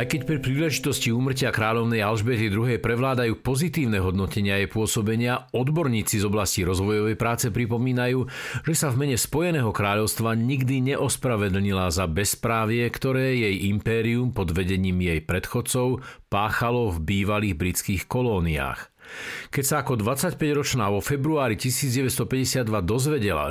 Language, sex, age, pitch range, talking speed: Slovak, male, 50-69, 100-130 Hz, 125 wpm